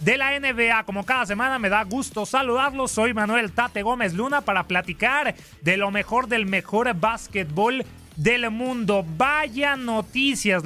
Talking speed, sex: 150 wpm, male